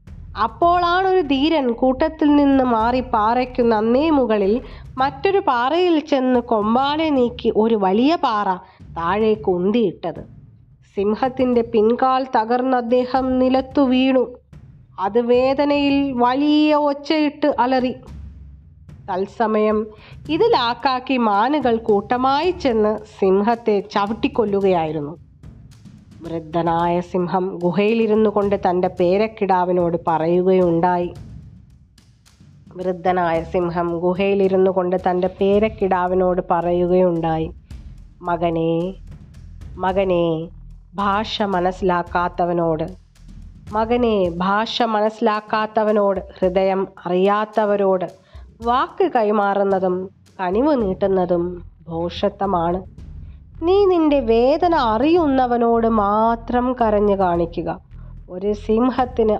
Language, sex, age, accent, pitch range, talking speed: Malayalam, female, 20-39, native, 180-250 Hz, 70 wpm